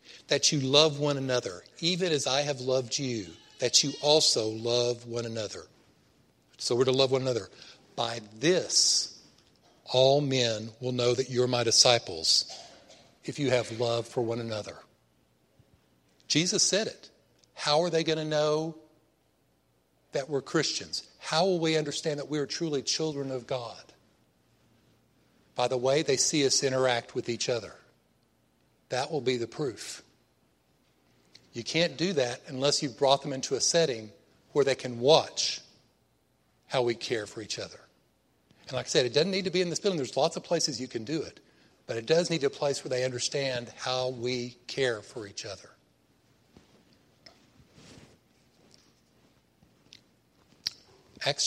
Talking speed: 155 wpm